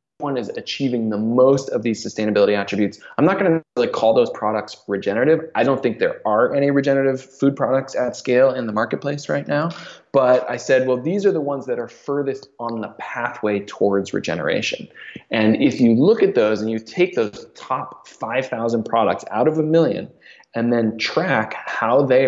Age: 20-39